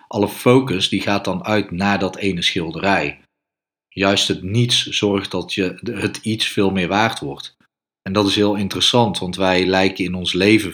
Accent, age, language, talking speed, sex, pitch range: Dutch, 40-59, Dutch, 180 wpm, male, 95-105 Hz